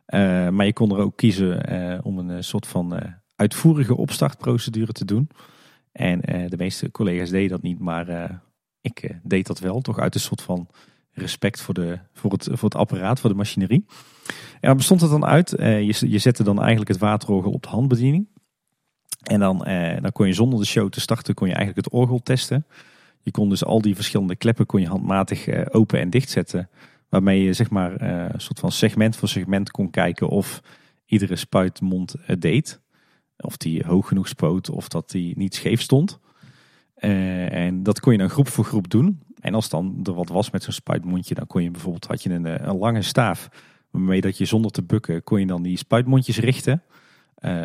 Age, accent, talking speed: 40-59, Dutch, 205 wpm